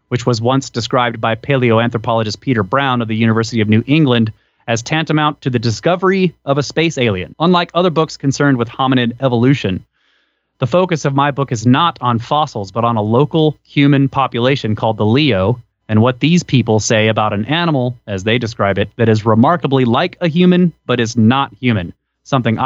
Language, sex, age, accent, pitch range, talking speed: English, male, 30-49, American, 115-145 Hz, 190 wpm